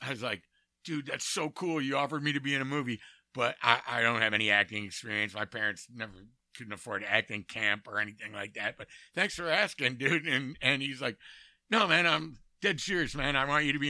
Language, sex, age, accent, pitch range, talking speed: English, male, 60-79, American, 105-140 Hz, 235 wpm